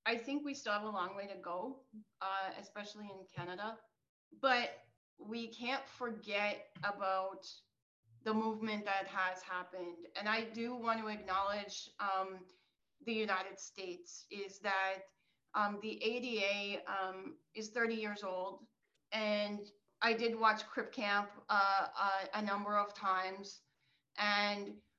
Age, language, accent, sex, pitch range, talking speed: 30-49, English, American, female, 200-230 Hz, 135 wpm